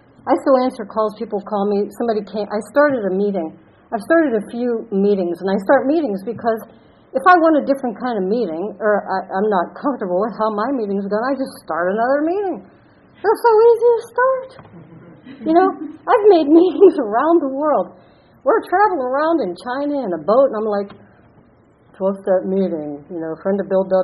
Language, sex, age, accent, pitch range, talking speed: English, female, 50-69, American, 185-270 Hz, 195 wpm